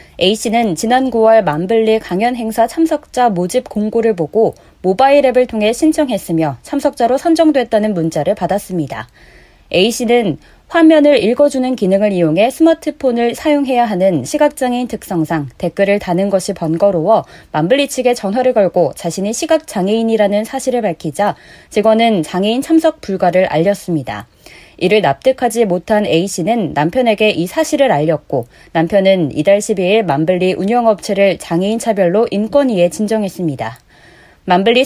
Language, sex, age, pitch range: Korean, female, 20-39, 185-255 Hz